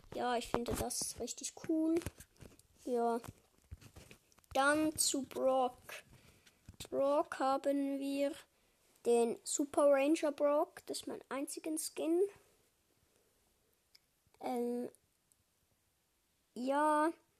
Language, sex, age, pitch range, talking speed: German, female, 20-39, 240-310 Hz, 85 wpm